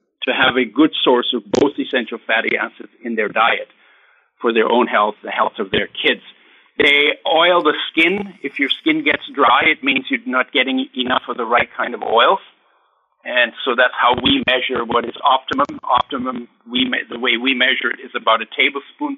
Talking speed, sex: 200 wpm, male